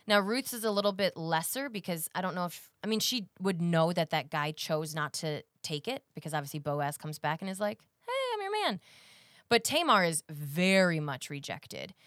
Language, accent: English, American